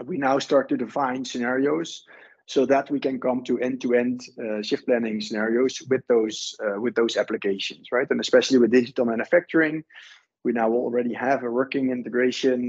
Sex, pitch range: male, 110-135 Hz